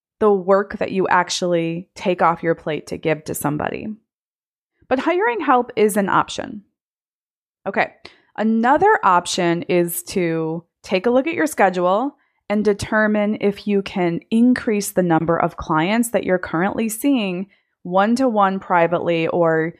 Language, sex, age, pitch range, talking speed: English, female, 20-39, 170-220 Hz, 140 wpm